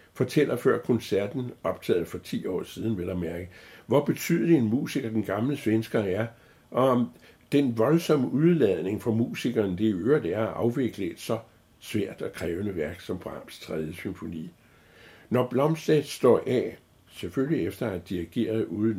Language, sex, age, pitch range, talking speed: Danish, male, 60-79, 100-125 Hz, 160 wpm